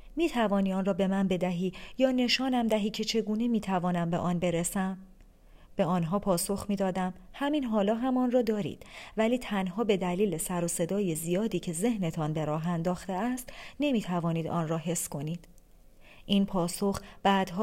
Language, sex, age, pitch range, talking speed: Persian, female, 40-59, 180-225 Hz, 155 wpm